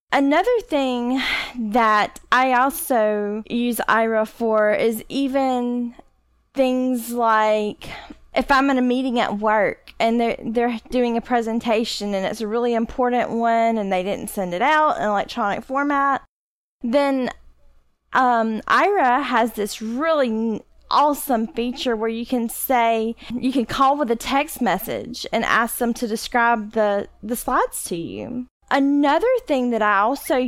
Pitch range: 225-265 Hz